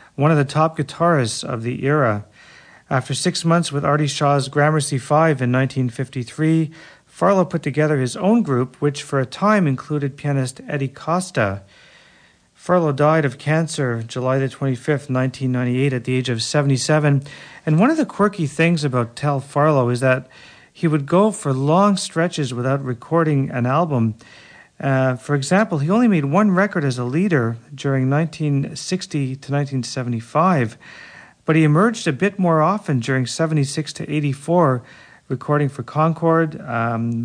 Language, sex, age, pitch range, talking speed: English, male, 40-59, 130-160 Hz, 155 wpm